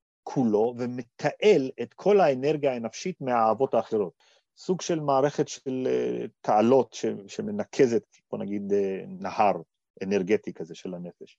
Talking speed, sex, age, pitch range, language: 110 wpm, male, 40-59, 110-150 Hz, Hebrew